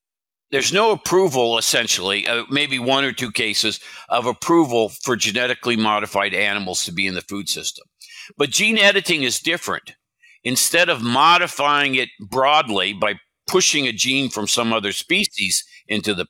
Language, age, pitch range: Chinese, 50-69, 120-155 Hz